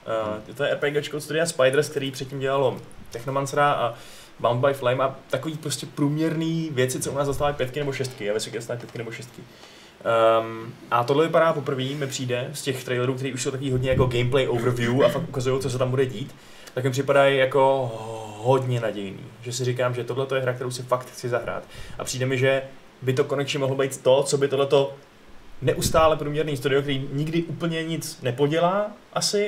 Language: Czech